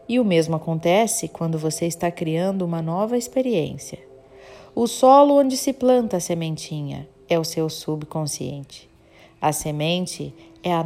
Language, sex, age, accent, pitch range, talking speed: Portuguese, female, 40-59, Brazilian, 155-205 Hz, 145 wpm